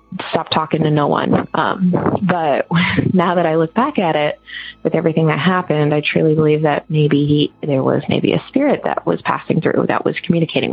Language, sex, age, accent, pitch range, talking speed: English, female, 20-39, American, 150-170 Hz, 195 wpm